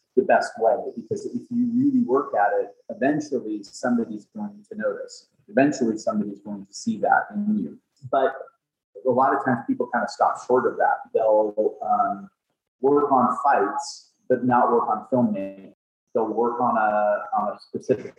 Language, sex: English, male